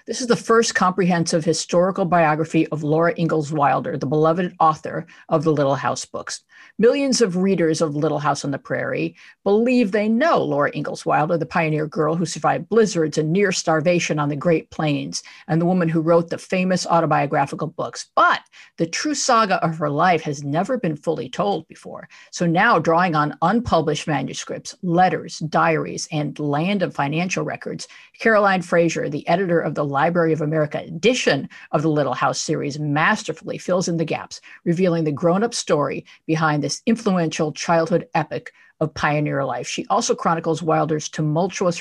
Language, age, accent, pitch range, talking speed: English, 50-69, American, 155-185 Hz, 170 wpm